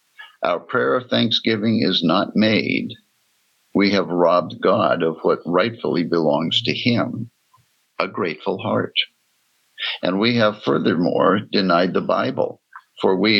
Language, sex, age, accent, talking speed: English, male, 60-79, American, 130 wpm